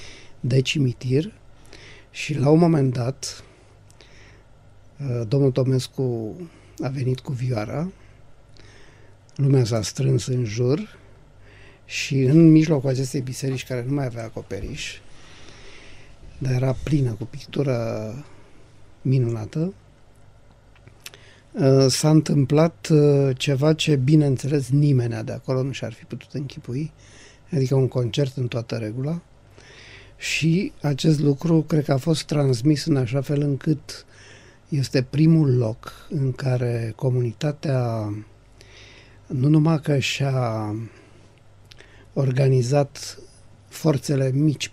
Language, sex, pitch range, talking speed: Romanian, male, 110-140 Hz, 105 wpm